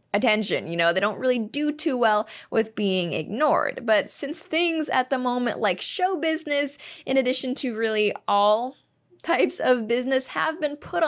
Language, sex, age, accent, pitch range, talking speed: English, female, 10-29, American, 200-285 Hz, 175 wpm